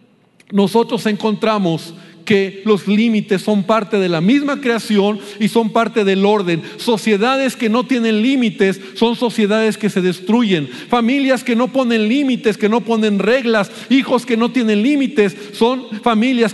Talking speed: 150 wpm